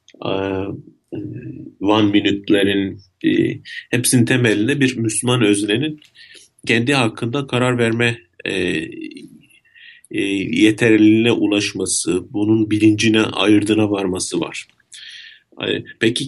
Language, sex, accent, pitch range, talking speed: Turkish, male, native, 105-135 Hz, 70 wpm